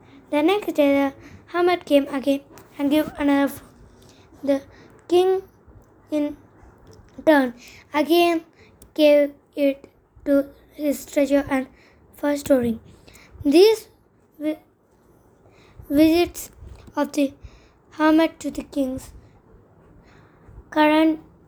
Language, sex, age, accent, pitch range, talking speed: English, female, 20-39, Indian, 280-320 Hz, 90 wpm